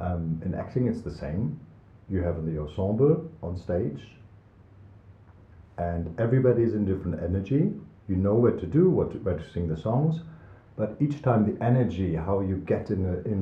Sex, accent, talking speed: male, German, 175 wpm